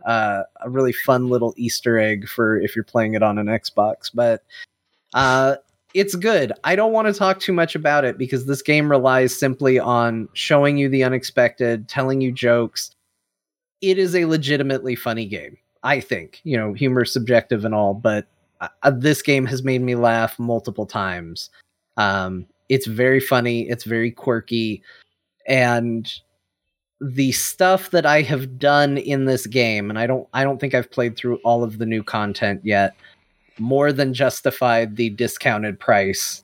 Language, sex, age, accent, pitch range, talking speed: English, male, 30-49, American, 115-150 Hz, 170 wpm